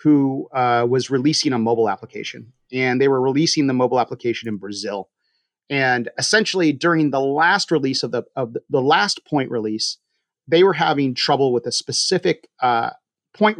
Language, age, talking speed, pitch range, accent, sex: English, 30-49, 170 wpm, 125-165 Hz, American, male